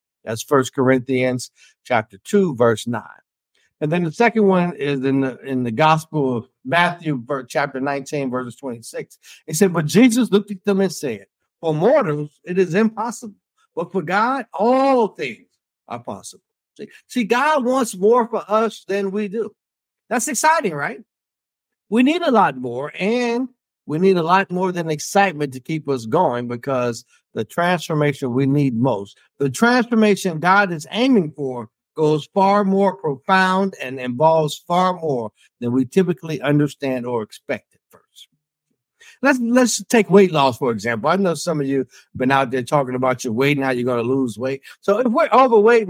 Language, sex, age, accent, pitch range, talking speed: English, male, 60-79, American, 135-220 Hz, 175 wpm